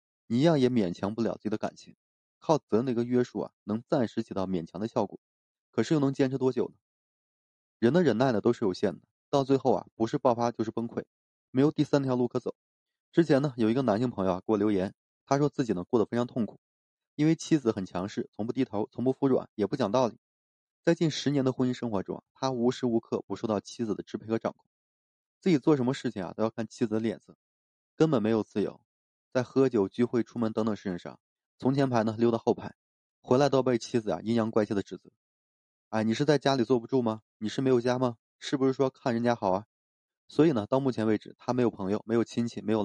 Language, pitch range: Chinese, 105-130 Hz